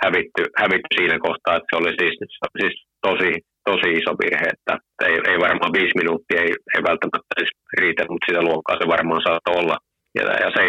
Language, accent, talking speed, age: Finnish, native, 190 wpm, 30-49